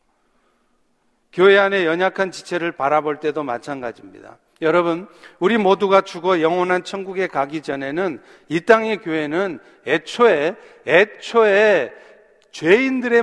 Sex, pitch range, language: male, 180-220 Hz, Korean